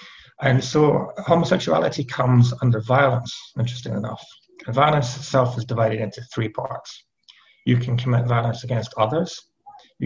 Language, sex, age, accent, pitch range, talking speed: English, male, 30-49, British, 115-130 Hz, 130 wpm